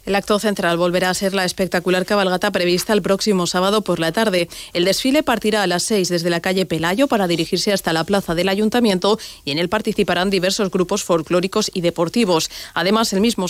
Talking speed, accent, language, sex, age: 200 wpm, Spanish, Spanish, female, 30-49